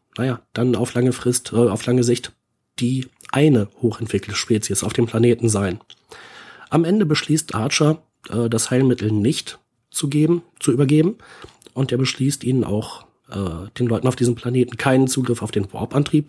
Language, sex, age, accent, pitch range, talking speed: German, male, 40-59, German, 115-145 Hz, 165 wpm